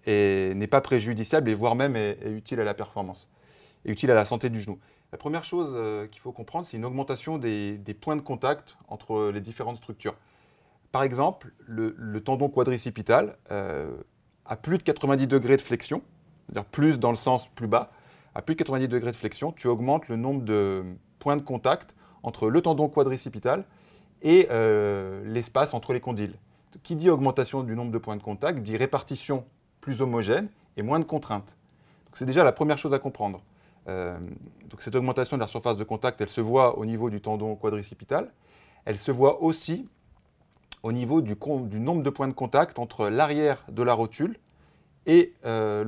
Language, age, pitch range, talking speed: French, 30-49, 110-140 Hz, 185 wpm